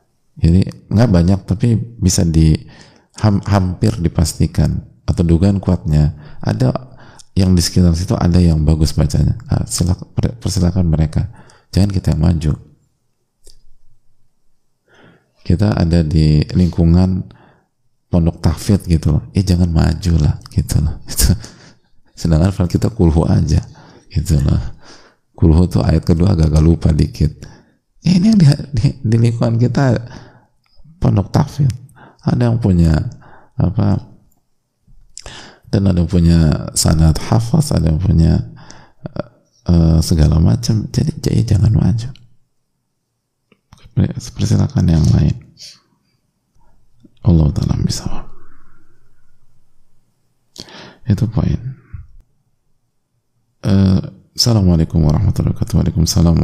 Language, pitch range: Indonesian, 85-120 Hz